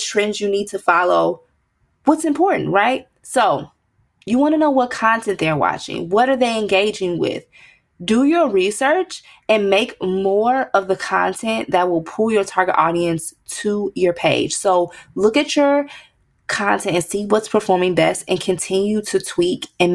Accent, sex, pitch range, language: American, female, 190-255 Hz, English